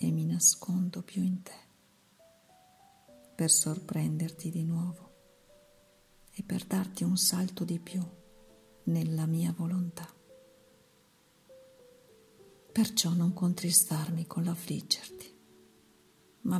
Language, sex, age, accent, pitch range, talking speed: Italian, female, 50-69, native, 160-185 Hz, 95 wpm